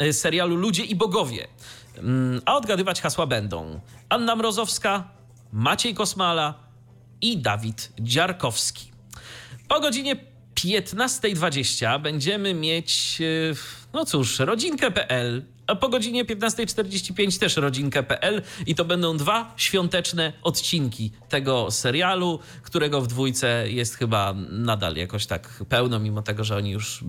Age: 30-49